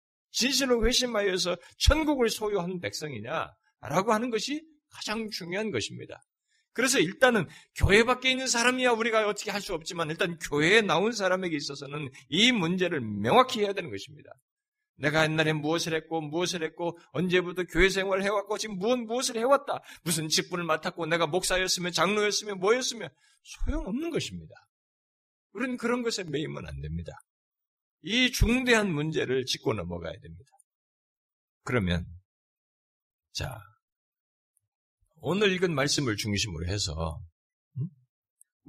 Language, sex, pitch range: Korean, male, 130-215 Hz